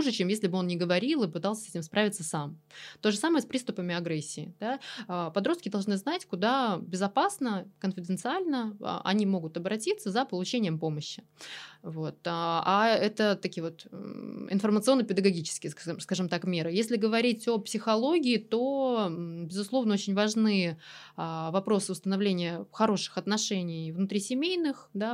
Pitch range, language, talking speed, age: 175-220 Hz, Russian, 130 wpm, 20-39